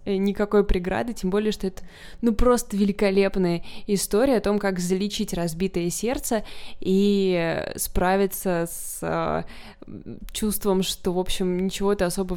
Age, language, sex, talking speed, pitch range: 20-39, Russian, female, 130 wpm, 180-210 Hz